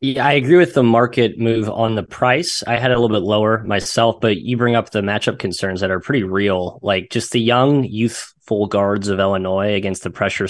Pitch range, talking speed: 105-120 Hz, 225 wpm